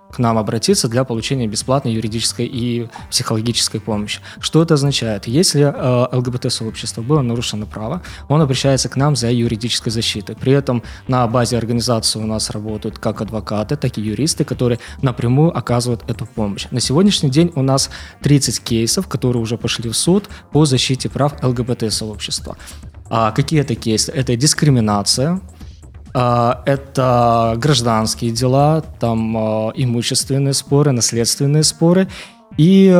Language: Ukrainian